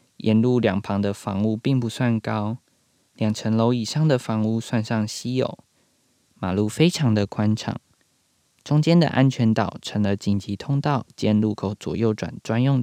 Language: Chinese